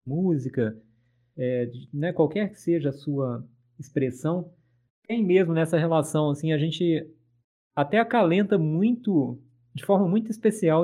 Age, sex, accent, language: 20-39, male, Brazilian, Portuguese